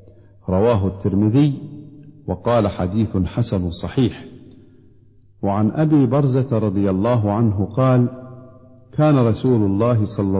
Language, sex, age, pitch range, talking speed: Arabic, male, 50-69, 100-120 Hz, 100 wpm